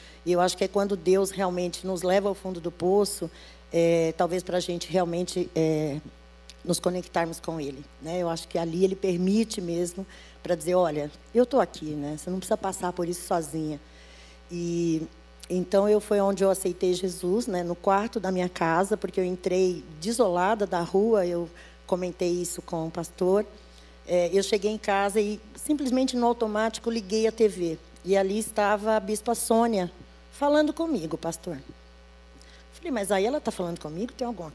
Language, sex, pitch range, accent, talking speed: Portuguese, female, 170-210 Hz, Brazilian, 180 wpm